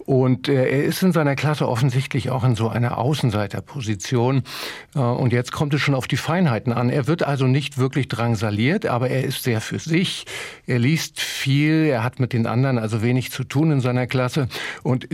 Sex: male